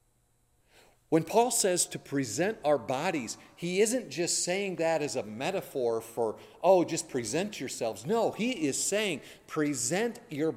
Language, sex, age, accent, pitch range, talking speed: English, male, 50-69, American, 140-195 Hz, 150 wpm